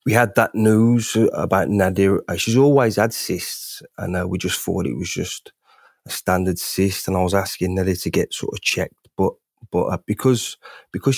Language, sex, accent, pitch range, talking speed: English, male, British, 95-105 Hz, 195 wpm